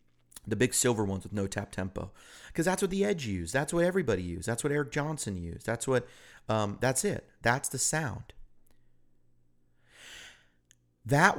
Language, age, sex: English, 30-49, male